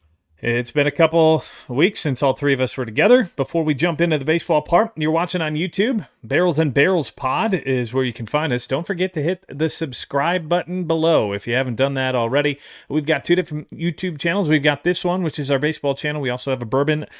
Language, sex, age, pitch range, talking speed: English, male, 30-49, 120-155 Hz, 235 wpm